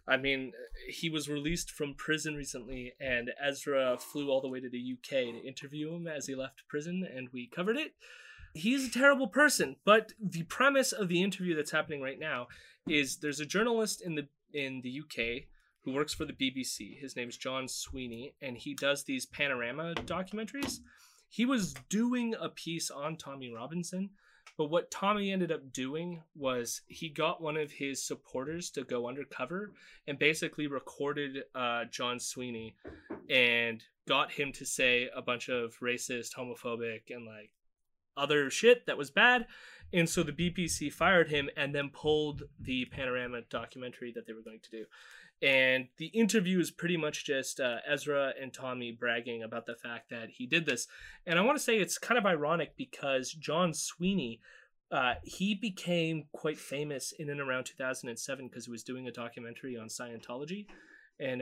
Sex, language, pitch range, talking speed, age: male, English, 125-175 Hz, 175 wpm, 20-39